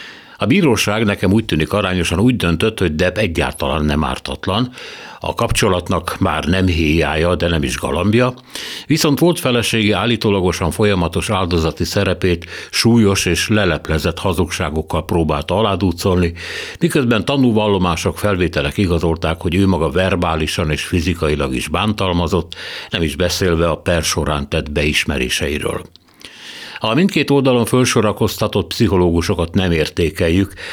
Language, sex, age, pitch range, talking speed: Hungarian, male, 60-79, 85-105 Hz, 125 wpm